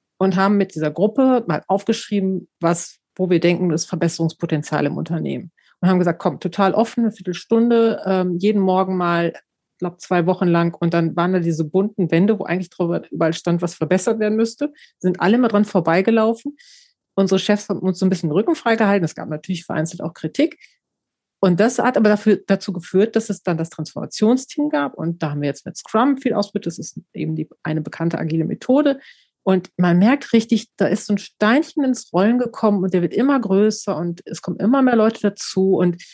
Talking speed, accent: 205 wpm, German